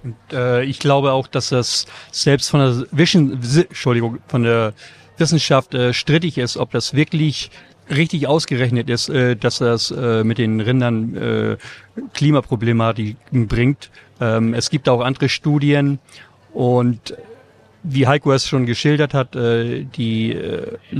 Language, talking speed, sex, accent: German, 140 wpm, male, German